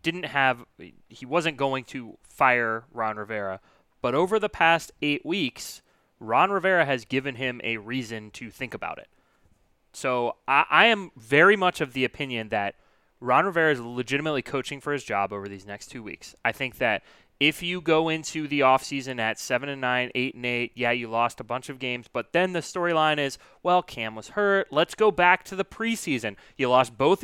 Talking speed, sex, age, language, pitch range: 200 wpm, male, 30-49, English, 120-155 Hz